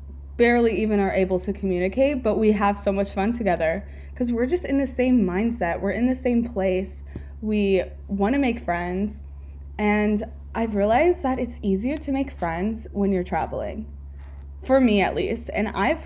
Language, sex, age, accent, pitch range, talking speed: English, female, 20-39, American, 165-250 Hz, 175 wpm